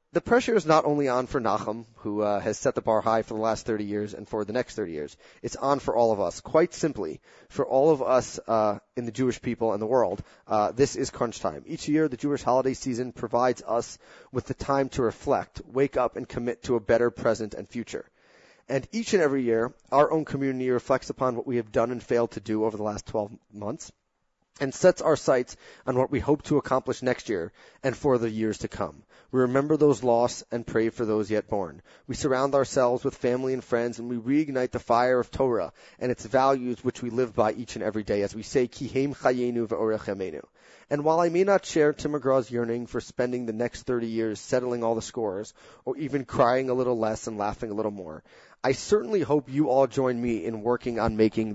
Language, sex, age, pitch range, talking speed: English, male, 30-49, 110-135 Hz, 230 wpm